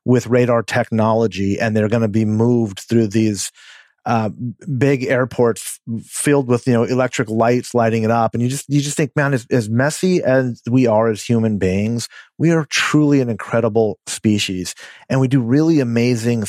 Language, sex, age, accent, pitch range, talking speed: English, male, 40-59, American, 105-125 Hz, 180 wpm